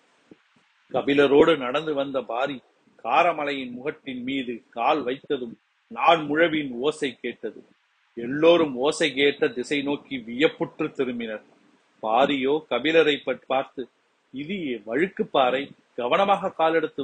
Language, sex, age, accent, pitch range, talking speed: Tamil, male, 40-59, native, 125-155 Hz, 95 wpm